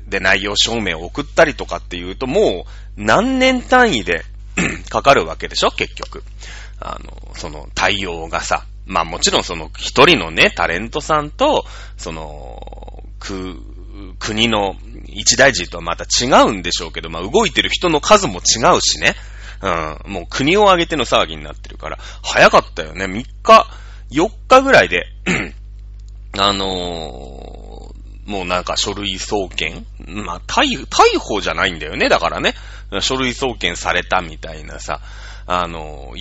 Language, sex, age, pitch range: Japanese, male, 30-49, 90-115 Hz